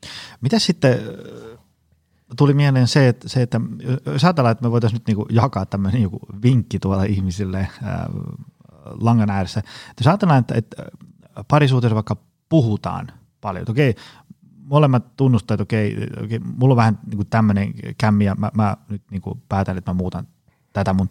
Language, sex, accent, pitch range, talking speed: Finnish, male, native, 105-135 Hz, 150 wpm